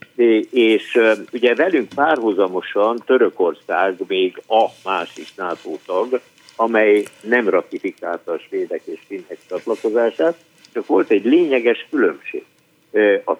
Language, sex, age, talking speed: Hungarian, male, 60-79, 105 wpm